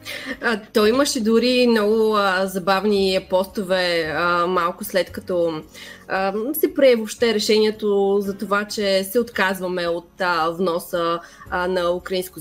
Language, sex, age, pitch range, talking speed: Bulgarian, female, 20-39, 185-235 Hz, 130 wpm